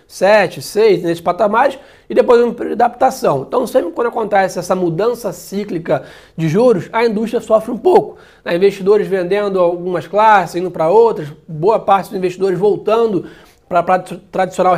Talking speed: 160 wpm